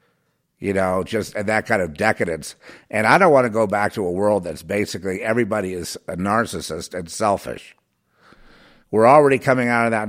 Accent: American